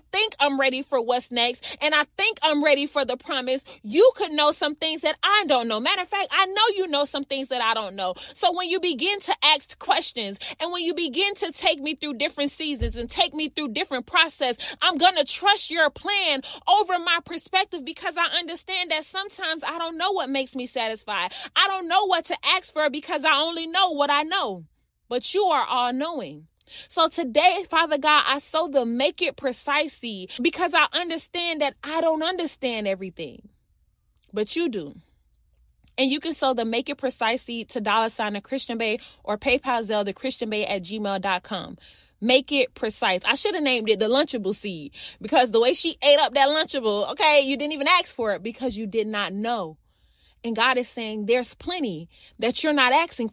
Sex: female